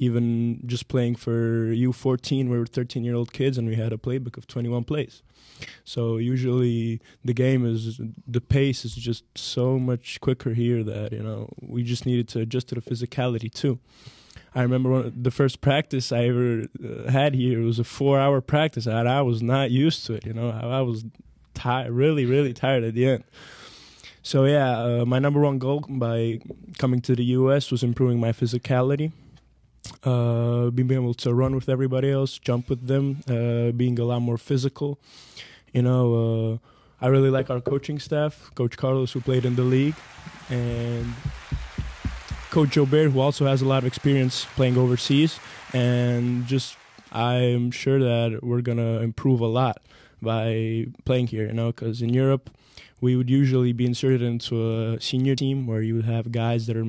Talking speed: 180 wpm